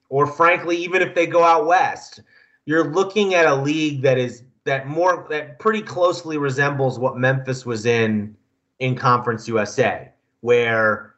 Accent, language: American, English